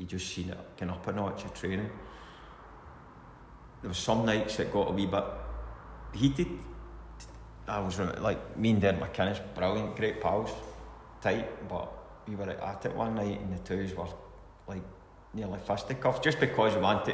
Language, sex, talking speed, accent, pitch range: English, male, 170 wpm, British, 90-100 Hz